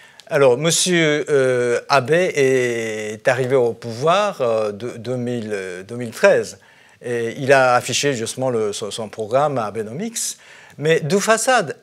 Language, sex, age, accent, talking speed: French, male, 50-69, French, 130 wpm